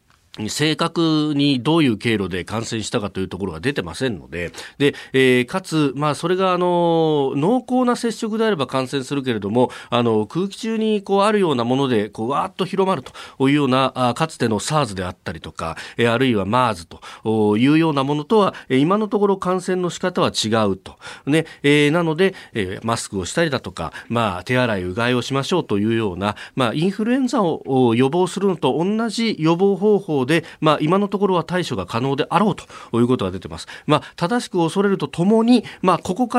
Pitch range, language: 120-190 Hz, Japanese